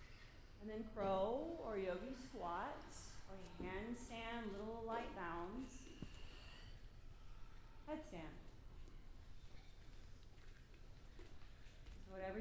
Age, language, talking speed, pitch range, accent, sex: 30-49, English, 65 wpm, 200-255 Hz, American, female